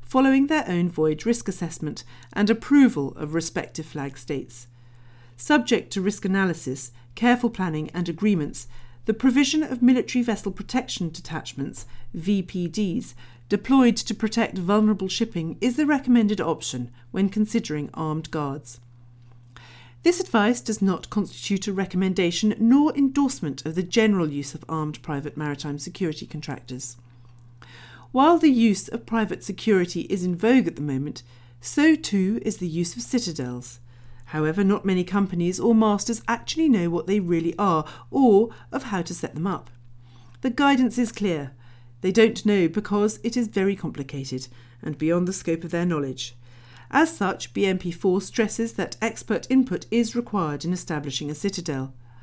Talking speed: 150 wpm